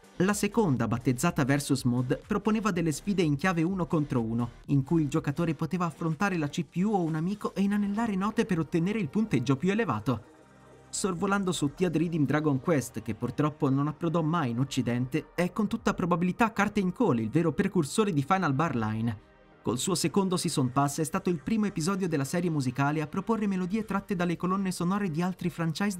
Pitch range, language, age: 140-190 Hz, Italian, 30-49